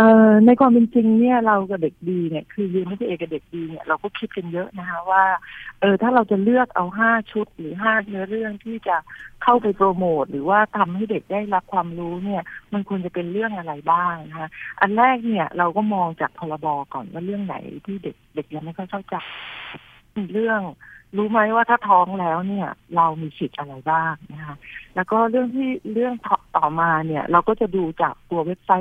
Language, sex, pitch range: Thai, female, 165-215 Hz